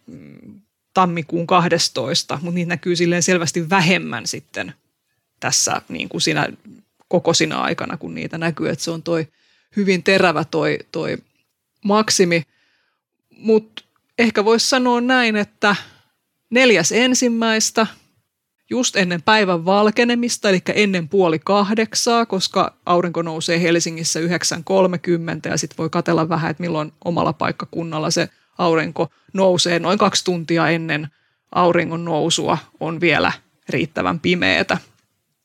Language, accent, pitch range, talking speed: Finnish, native, 170-200 Hz, 115 wpm